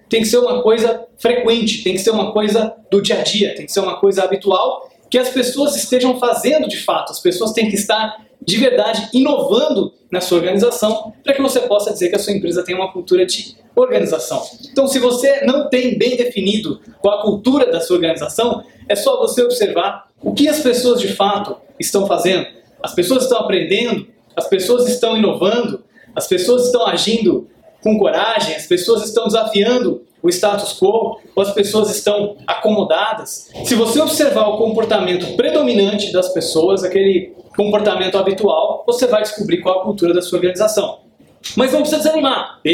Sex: male